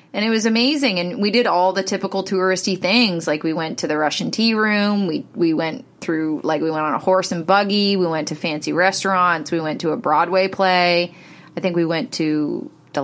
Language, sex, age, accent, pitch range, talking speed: English, female, 30-49, American, 170-220 Hz, 225 wpm